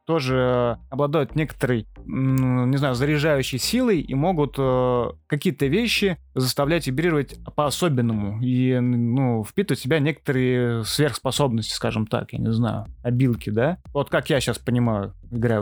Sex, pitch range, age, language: male, 120-150 Hz, 20-39, Russian